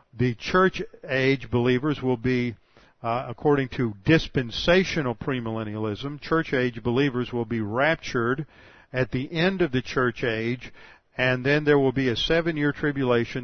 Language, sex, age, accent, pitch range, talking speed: English, male, 50-69, American, 125-155 Hz, 145 wpm